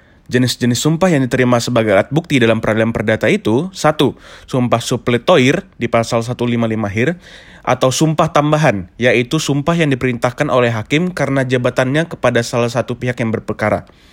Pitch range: 115-145 Hz